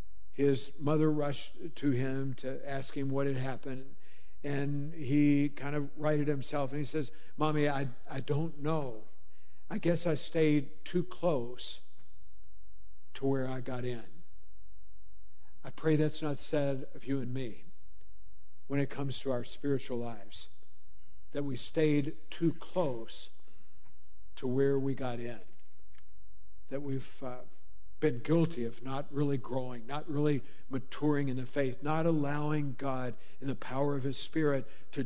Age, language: 60-79, English